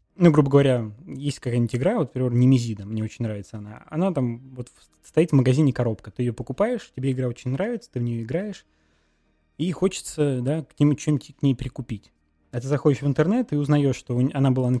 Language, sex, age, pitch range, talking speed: Russian, male, 20-39, 120-145 Hz, 200 wpm